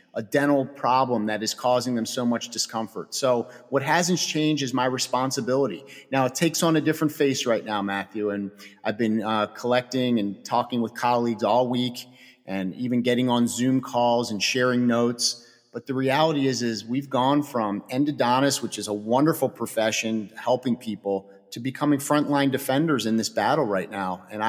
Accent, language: American, English